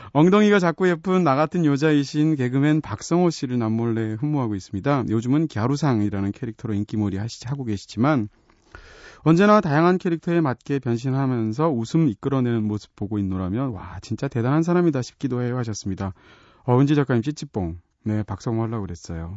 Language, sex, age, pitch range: Korean, male, 30-49, 105-150 Hz